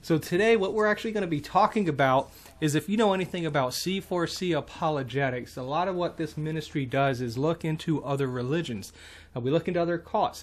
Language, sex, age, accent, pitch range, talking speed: English, male, 30-49, American, 130-165 Hz, 200 wpm